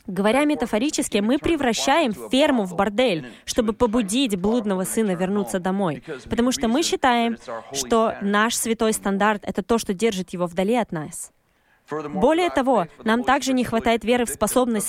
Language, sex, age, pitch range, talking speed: Russian, female, 20-39, 205-250 Hz, 155 wpm